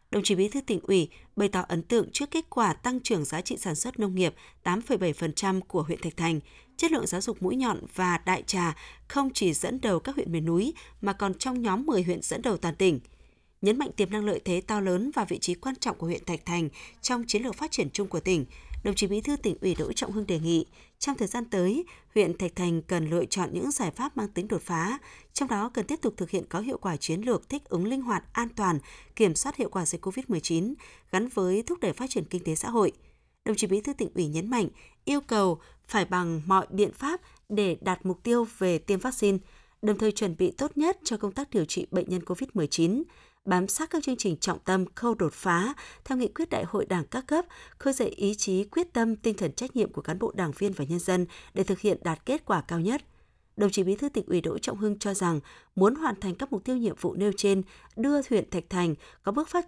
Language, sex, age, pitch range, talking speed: Vietnamese, female, 20-39, 175-235 Hz, 250 wpm